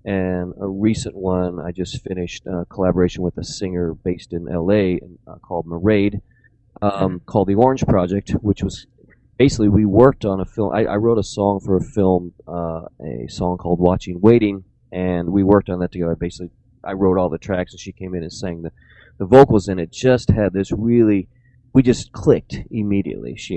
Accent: American